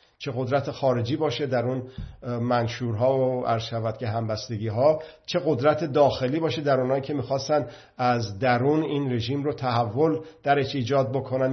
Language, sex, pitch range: Persian, male, 120-150 Hz